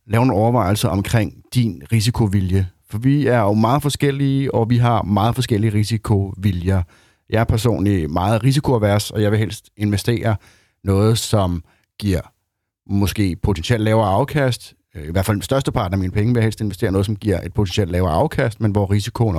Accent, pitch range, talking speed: native, 90-110 Hz, 180 wpm